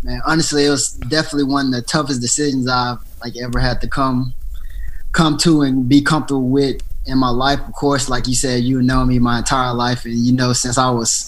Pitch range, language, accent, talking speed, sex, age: 120-135 Hz, English, American, 225 wpm, male, 20-39